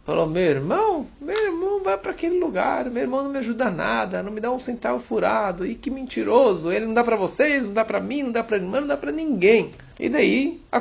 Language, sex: Portuguese, male